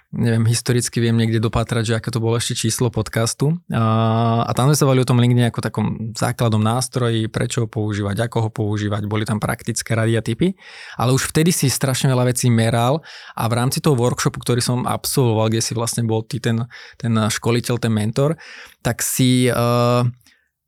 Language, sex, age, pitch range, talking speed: Slovak, male, 20-39, 115-135 Hz, 185 wpm